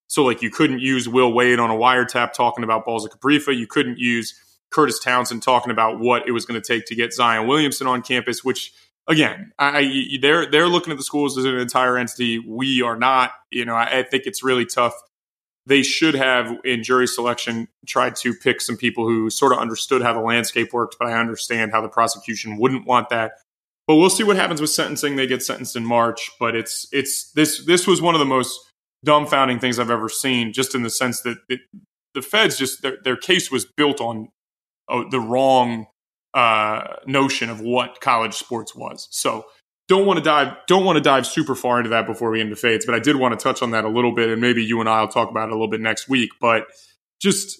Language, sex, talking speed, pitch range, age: English, male, 230 wpm, 115-135 Hz, 20-39